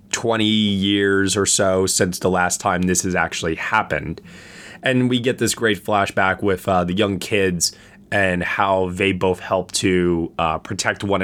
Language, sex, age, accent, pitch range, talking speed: English, male, 20-39, American, 90-110 Hz, 170 wpm